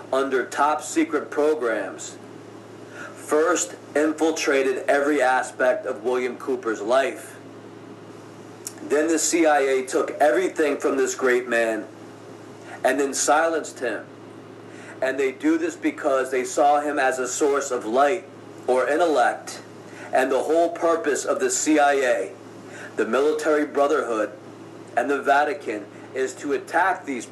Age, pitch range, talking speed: 40-59, 135-170 Hz, 125 wpm